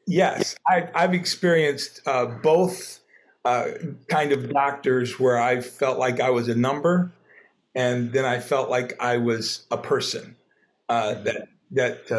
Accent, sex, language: American, male, English